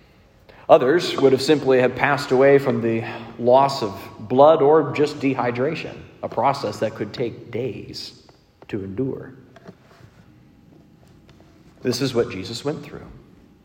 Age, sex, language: 40-59, male, English